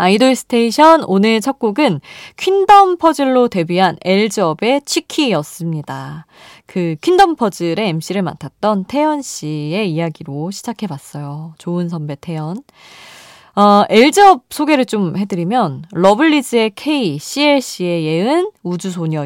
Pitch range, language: 170-275 Hz, Korean